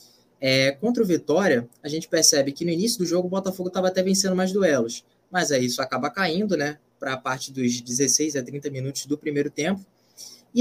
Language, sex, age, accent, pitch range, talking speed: Portuguese, male, 20-39, Brazilian, 145-195 Hz, 210 wpm